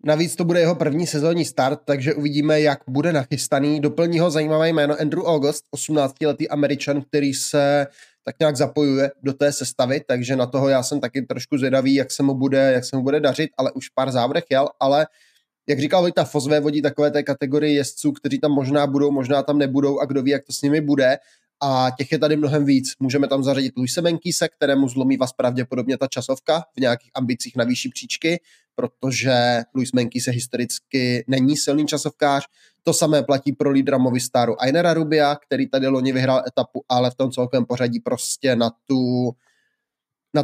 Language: Czech